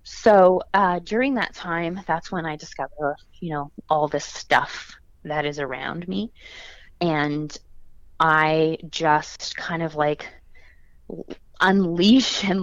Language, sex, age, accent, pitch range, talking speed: English, female, 20-39, American, 150-185 Hz, 125 wpm